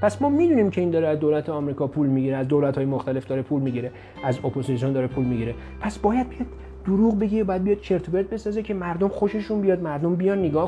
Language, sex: Persian, male